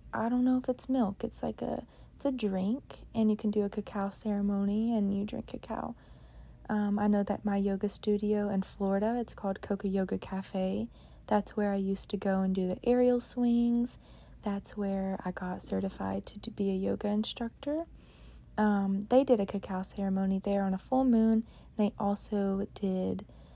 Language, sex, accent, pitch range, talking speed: English, female, American, 195-220 Hz, 185 wpm